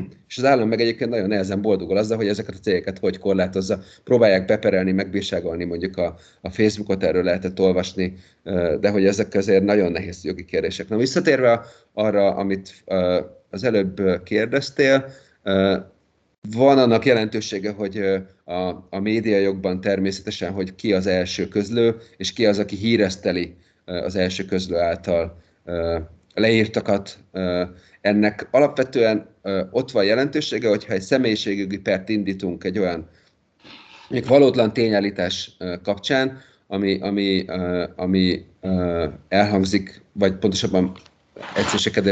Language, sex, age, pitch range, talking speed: Hungarian, male, 30-49, 90-110 Hz, 130 wpm